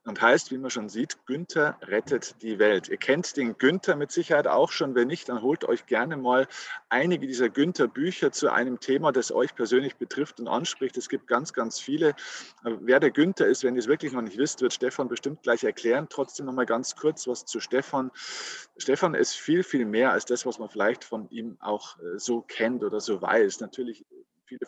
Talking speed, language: 210 wpm, German